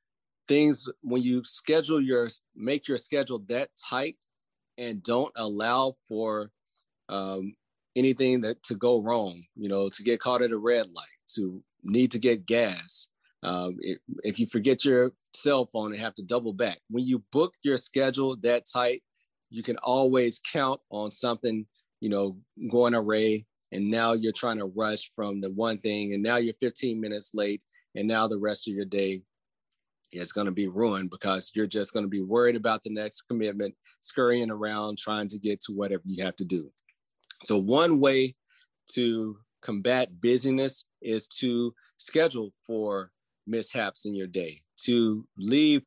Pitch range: 100-125 Hz